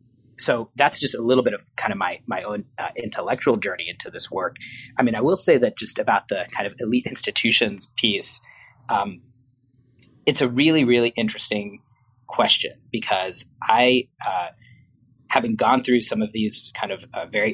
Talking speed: 180 wpm